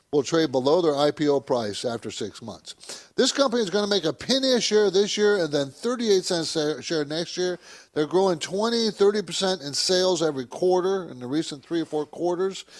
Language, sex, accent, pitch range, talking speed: English, male, American, 145-205 Hz, 200 wpm